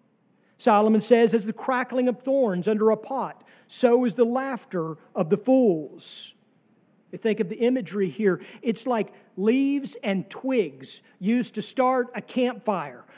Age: 40-59